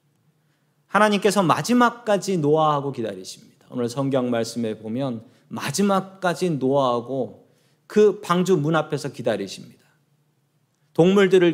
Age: 40-59